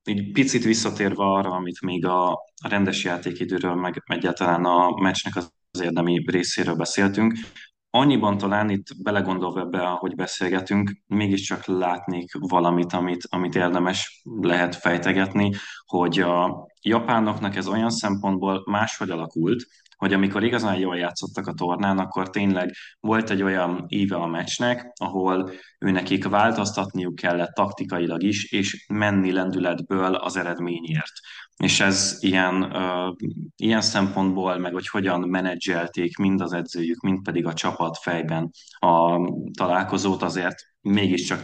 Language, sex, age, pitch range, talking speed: Hungarian, male, 20-39, 90-100 Hz, 125 wpm